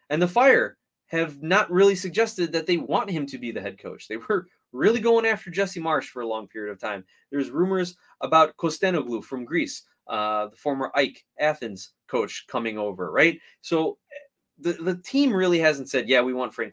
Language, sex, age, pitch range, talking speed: English, male, 20-39, 125-175 Hz, 195 wpm